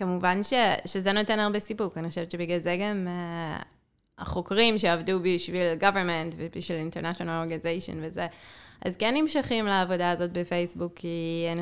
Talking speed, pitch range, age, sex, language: 145 wpm, 170-195 Hz, 20-39, female, Hebrew